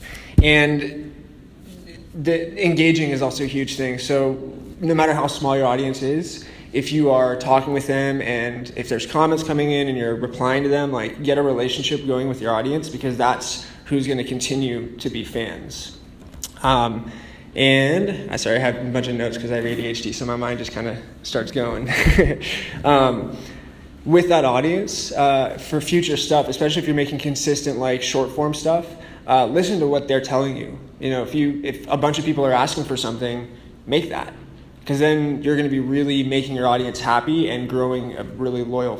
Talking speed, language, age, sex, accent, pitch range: 190 wpm, English, 20-39, male, American, 125-145 Hz